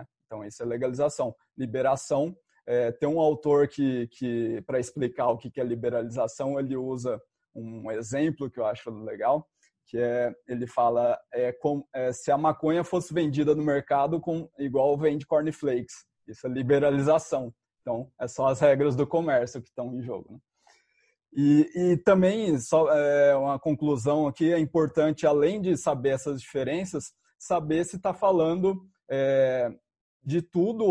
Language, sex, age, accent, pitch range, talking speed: Portuguese, male, 20-39, Brazilian, 130-170 Hz, 140 wpm